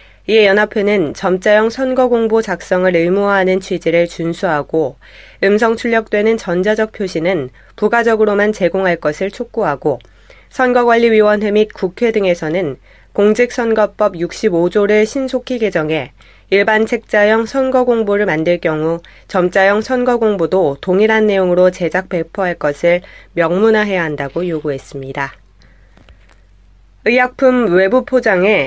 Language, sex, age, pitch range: Korean, female, 20-39, 170-220 Hz